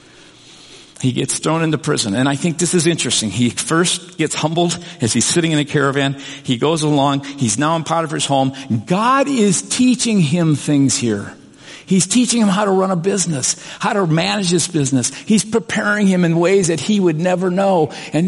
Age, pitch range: 50-69, 150-205 Hz